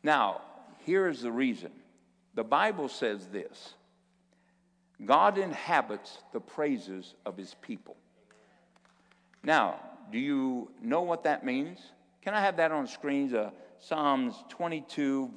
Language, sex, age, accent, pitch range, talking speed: English, male, 60-79, American, 130-185 Hz, 140 wpm